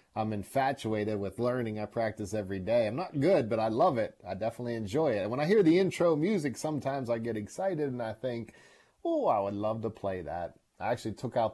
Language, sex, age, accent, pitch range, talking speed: English, male, 30-49, American, 110-165 Hz, 225 wpm